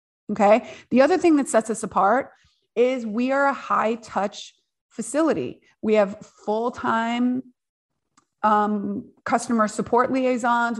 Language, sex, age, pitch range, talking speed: English, female, 30-49, 215-255 Hz, 120 wpm